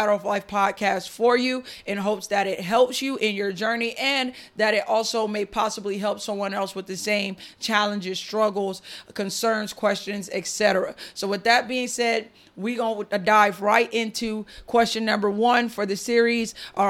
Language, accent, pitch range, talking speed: English, American, 200-230 Hz, 170 wpm